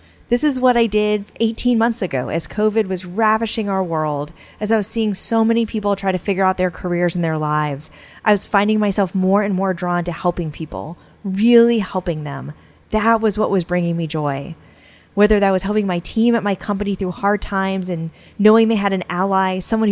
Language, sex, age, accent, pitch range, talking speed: English, female, 20-39, American, 170-215 Hz, 210 wpm